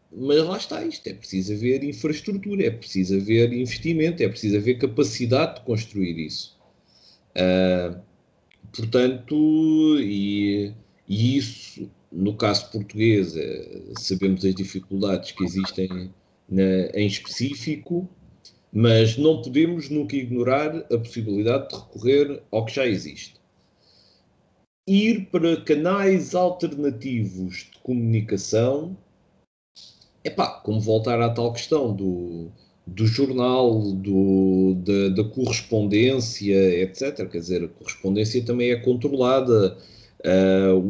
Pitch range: 100-145 Hz